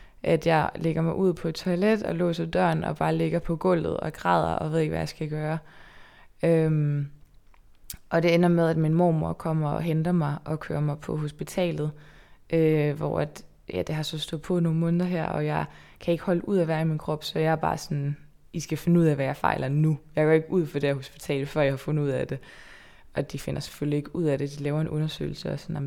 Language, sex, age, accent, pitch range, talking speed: Danish, female, 20-39, native, 150-170 Hz, 250 wpm